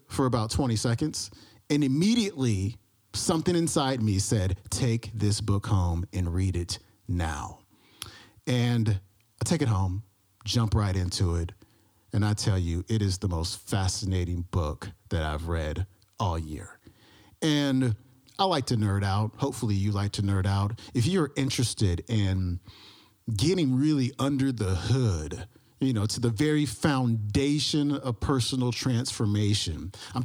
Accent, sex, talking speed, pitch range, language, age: American, male, 145 wpm, 95-125 Hz, English, 40-59